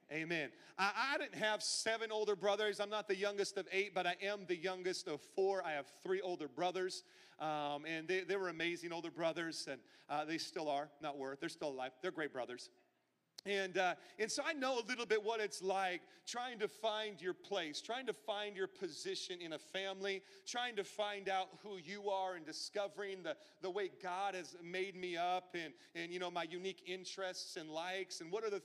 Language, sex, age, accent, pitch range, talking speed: English, male, 40-59, American, 170-205 Hz, 215 wpm